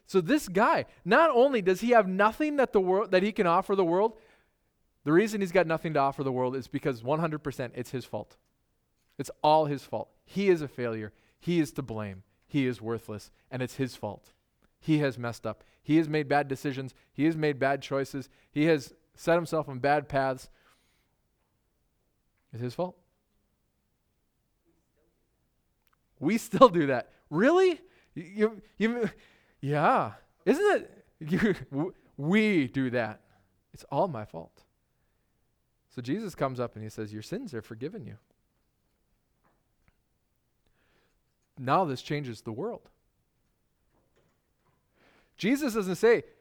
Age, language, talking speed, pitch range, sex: 20-39, English, 145 wpm, 125-190 Hz, male